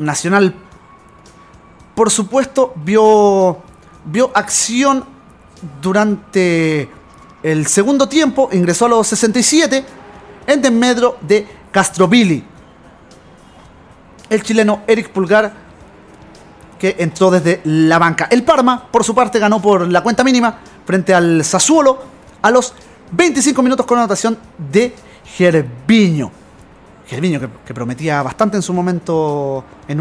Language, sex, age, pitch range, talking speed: Spanish, male, 30-49, 170-245 Hz, 115 wpm